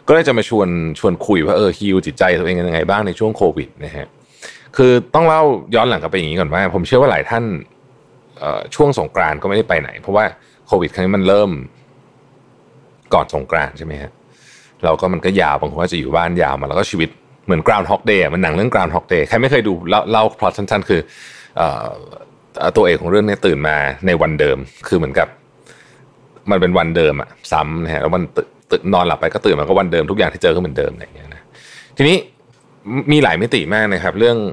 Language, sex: Thai, male